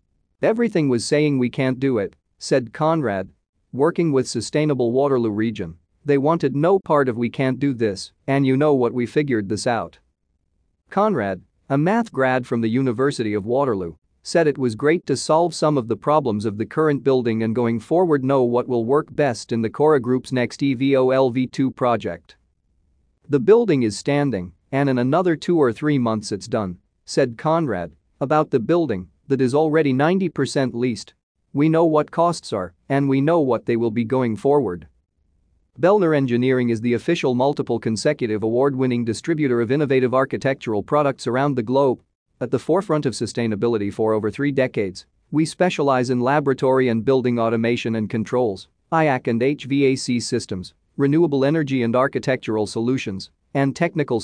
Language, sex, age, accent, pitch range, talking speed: English, male, 40-59, American, 110-145 Hz, 170 wpm